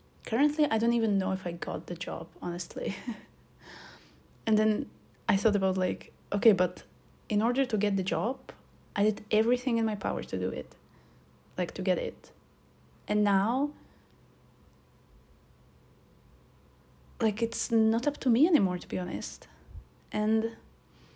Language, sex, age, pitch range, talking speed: English, female, 20-39, 190-230 Hz, 145 wpm